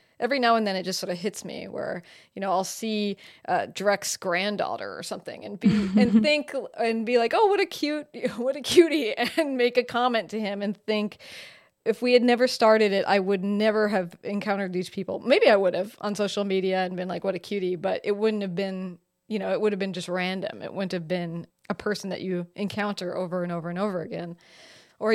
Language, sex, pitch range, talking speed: English, female, 190-240 Hz, 230 wpm